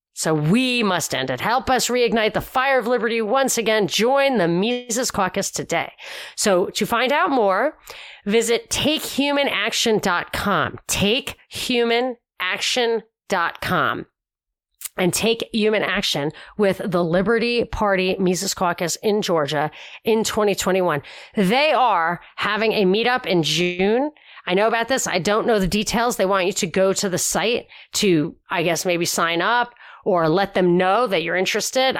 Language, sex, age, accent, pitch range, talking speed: English, female, 30-49, American, 180-230 Hz, 145 wpm